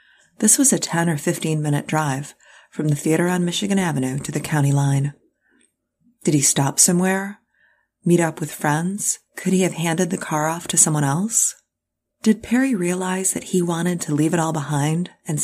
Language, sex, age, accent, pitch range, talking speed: English, female, 30-49, American, 150-185 Hz, 185 wpm